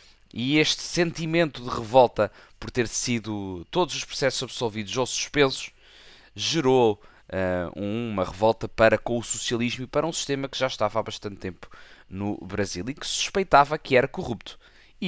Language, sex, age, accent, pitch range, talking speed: Portuguese, male, 20-39, Portuguese, 115-145 Hz, 165 wpm